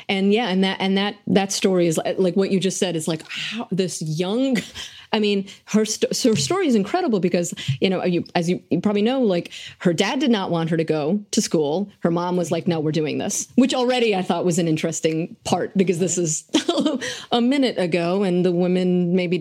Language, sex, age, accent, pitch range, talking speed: English, female, 30-49, American, 175-235 Hz, 230 wpm